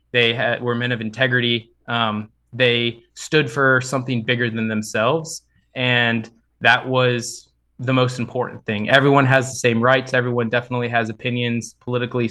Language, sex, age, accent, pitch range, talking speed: English, male, 20-39, American, 115-130 Hz, 150 wpm